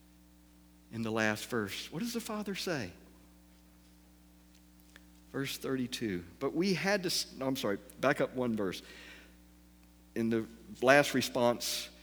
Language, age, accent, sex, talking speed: English, 50-69, American, male, 130 wpm